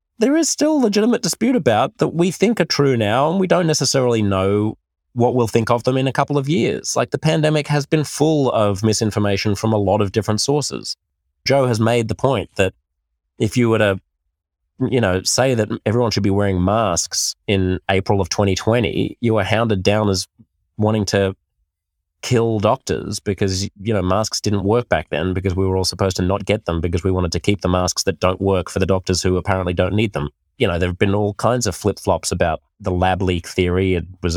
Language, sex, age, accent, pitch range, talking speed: English, male, 20-39, Australian, 90-115 Hz, 220 wpm